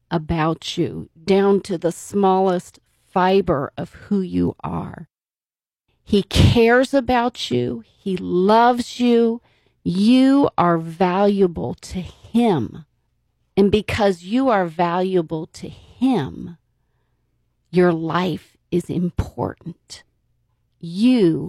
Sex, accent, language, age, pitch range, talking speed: female, American, English, 40-59, 165-205 Hz, 100 wpm